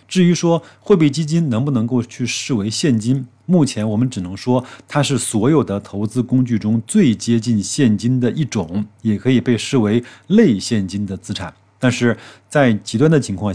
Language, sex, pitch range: Chinese, male, 105-130 Hz